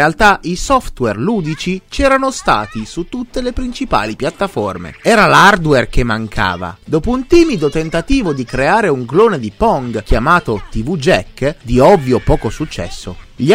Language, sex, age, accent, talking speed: Italian, male, 30-49, native, 150 wpm